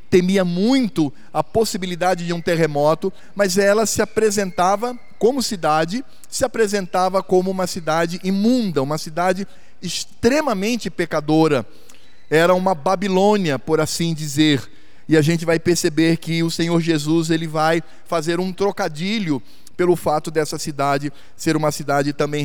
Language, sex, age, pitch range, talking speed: Portuguese, male, 20-39, 155-205 Hz, 135 wpm